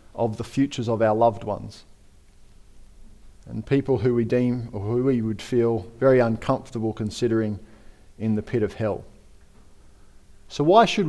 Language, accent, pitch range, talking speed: English, Australian, 110-145 Hz, 150 wpm